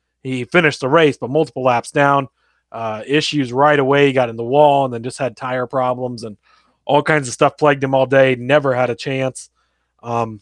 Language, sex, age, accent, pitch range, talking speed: English, male, 30-49, American, 125-155 Hz, 215 wpm